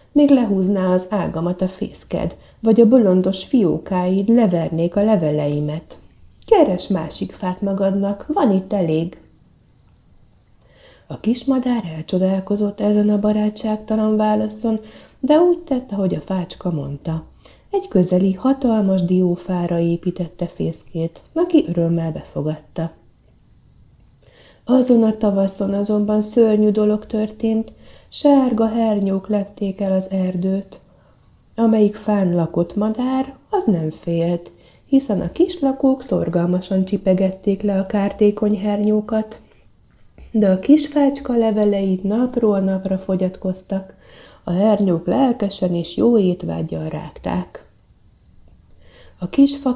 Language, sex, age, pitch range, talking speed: Hungarian, female, 30-49, 185-220 Hz, 105 wpm